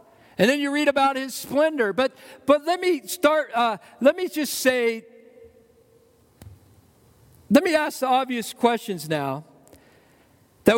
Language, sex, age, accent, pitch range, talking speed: English, male, 50-69, American, 230-285 Hz, 140 wpm